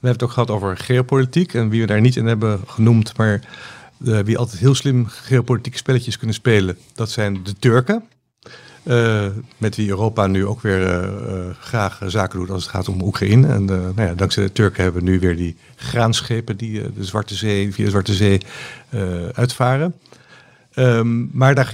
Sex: male